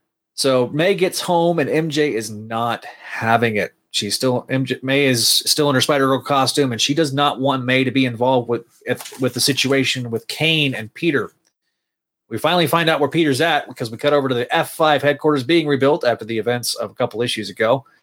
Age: 30-49